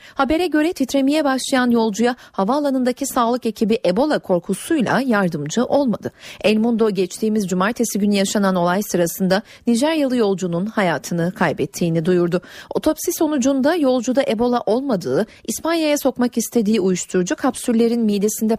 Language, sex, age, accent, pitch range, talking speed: Turkish, female, 40-59, native, 195-265 Hz, 115 wpm